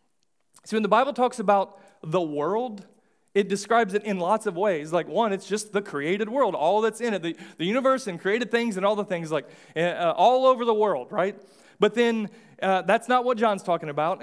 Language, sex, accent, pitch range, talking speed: English, male, American, 180-220 Hz, 220 wpm